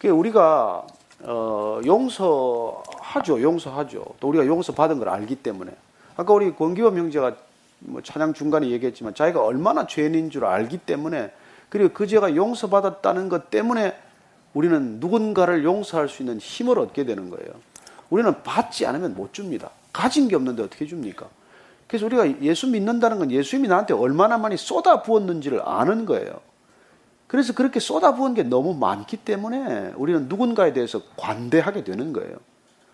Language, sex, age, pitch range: Korean, male, 40-59, 170-265 Hz